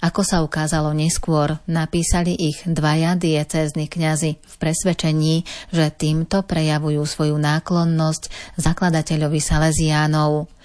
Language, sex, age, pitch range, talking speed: Slovak, female, 30-49, 155-170 Hz, 100 wpm